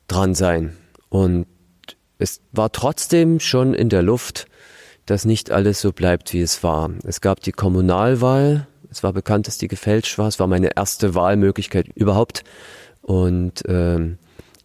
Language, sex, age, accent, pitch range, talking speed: German, male, 40-59, German, 90-110 Hz, 150 wpm